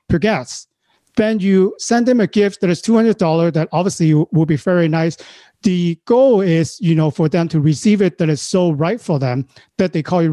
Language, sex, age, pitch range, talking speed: English, male, 40-59, 160-200 Hz, 215 wpm